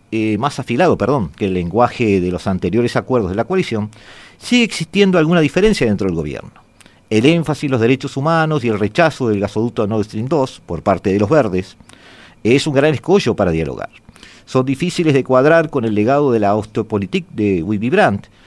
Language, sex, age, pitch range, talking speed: Spanish, male, 50-69, 105-145 Hz, 190 wpm